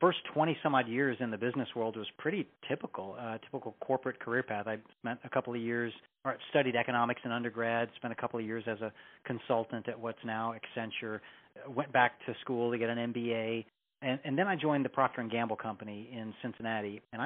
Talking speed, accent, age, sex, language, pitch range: 215 wpm, American, 40-59, male, English, 115-130 Hz